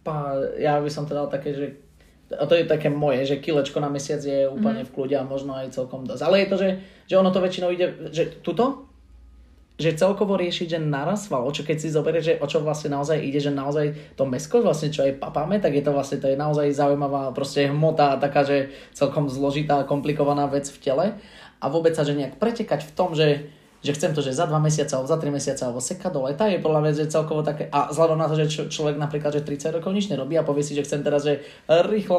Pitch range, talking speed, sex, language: 145-170 Hz, 235 wpm, male, Slovak